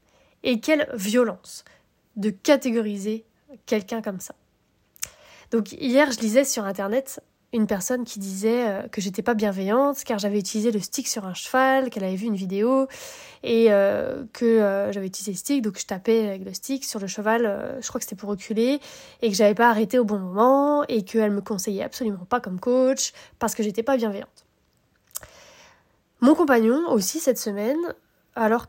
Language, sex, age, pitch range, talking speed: French, female, 20-39, 205-250 Hz, 180 wpm